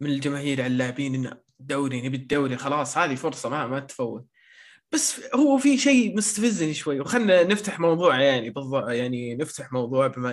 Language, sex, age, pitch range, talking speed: Arabic, male, 20-39, 135-200 Hz, 170 wpm